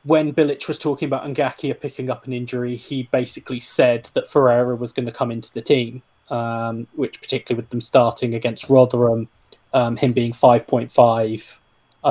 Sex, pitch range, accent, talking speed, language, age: male, 120-140 Hz, British, 170 wpm, English, 20-39